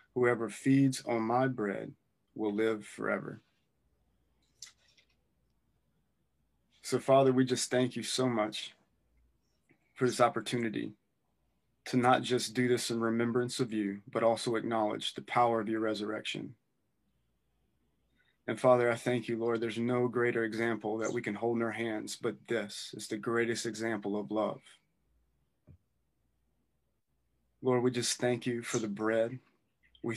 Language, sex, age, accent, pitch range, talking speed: English, male, 20-39, American, 110-125 Hz, 140 wpm